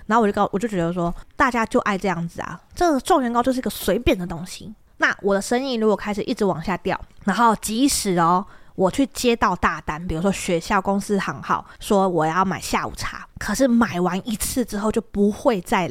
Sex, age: female, 20-39